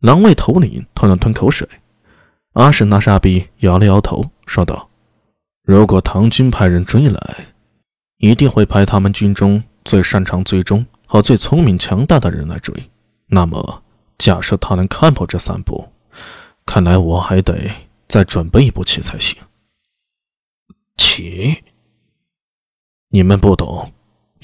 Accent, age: native, 20-39